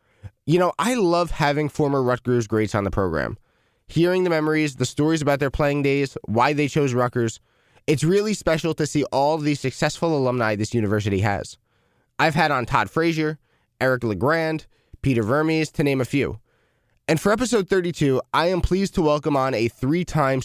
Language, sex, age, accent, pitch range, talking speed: English, male, 20-39, American, 120-155 Hz, 180 wpm